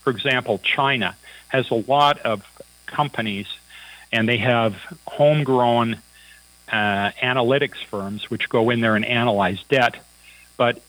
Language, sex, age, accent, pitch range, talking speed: English, male, 40-59, American, 110-140 Hz, 125 wpm